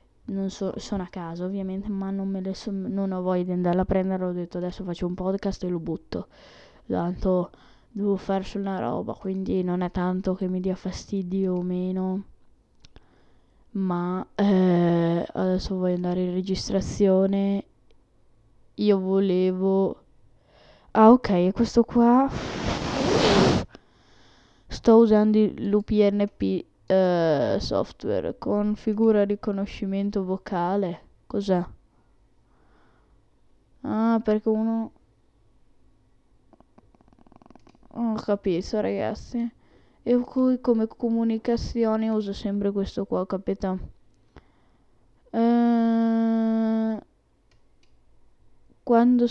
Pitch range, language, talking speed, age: 180-215 Hz, Italian, 100 wpm, 10-29